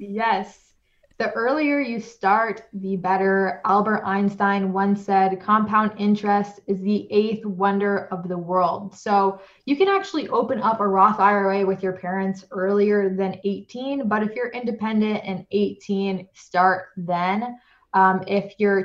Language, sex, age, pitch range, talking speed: English, female, 20-39, 185-215 Hz, 145 wpm